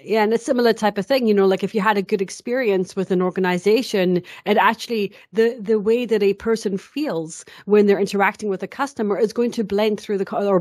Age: 30-49